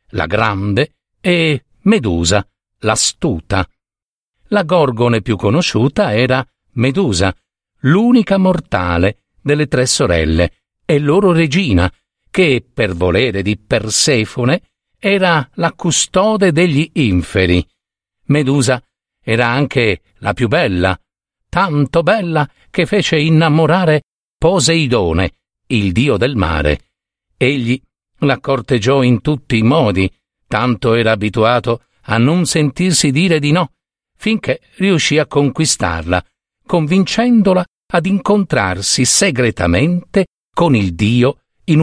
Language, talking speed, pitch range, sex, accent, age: Italian, 105 wpm, 100-165 Hz, male, native, 50-69